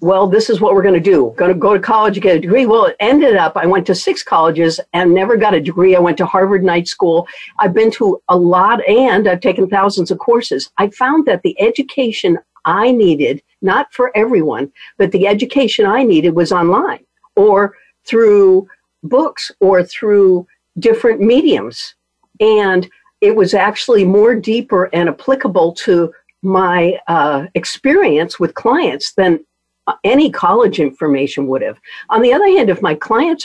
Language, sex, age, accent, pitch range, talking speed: English, female, 60-79, American, 175-255 Hz, 180 wpm